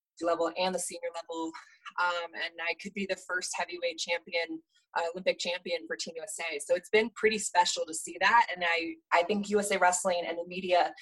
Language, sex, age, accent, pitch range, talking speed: English, female, 20-39, American, 165-190 Hz, 200 wpm